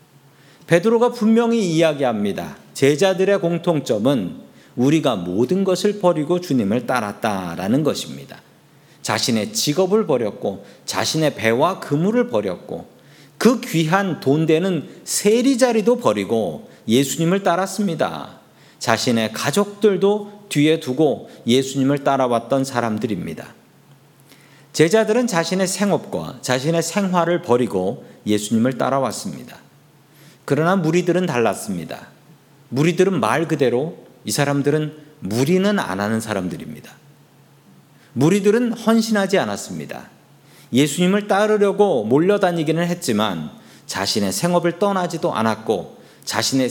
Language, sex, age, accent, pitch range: Korean, male, 40-59, native, 135-190 Hz